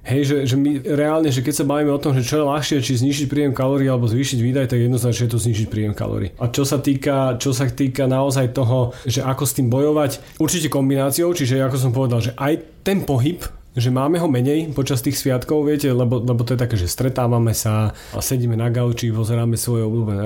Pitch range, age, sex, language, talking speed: 125-150 Hz, 30-49, male, Slovak, 225 wpm